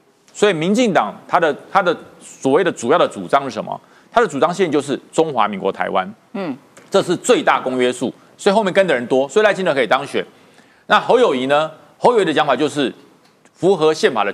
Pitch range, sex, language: 170-235 Hz, male, Chinese